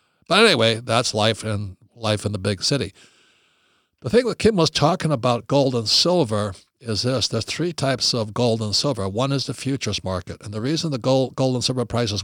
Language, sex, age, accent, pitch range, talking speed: English, male, 60-79, American, 105-130 Hz, 210 wpm